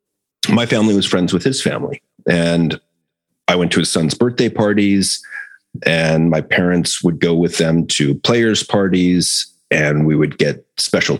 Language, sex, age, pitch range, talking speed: English, male, 40-59, 85-105 Hz, 160 wpm